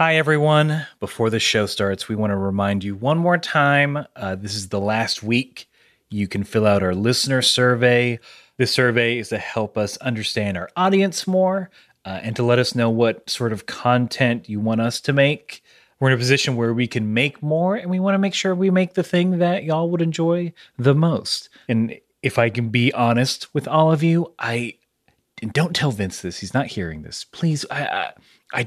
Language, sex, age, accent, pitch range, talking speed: English, male, 30-49, American, 105-145 Hz, 210 wpm